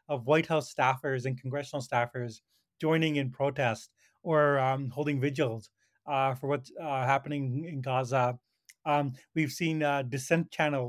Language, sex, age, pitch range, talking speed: English, male, 30-49, 135-175 Hz, 150 wpm